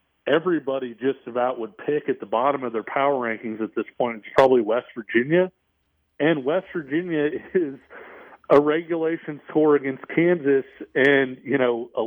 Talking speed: 160 wpm